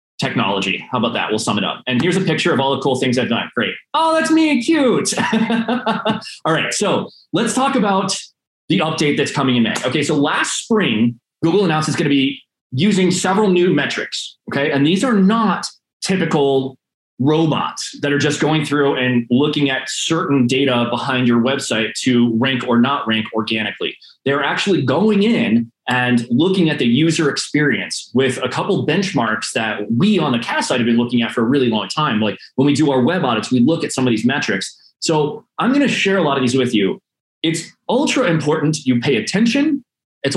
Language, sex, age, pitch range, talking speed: English, male, 20-39, 125-190 Hz, 205 wpm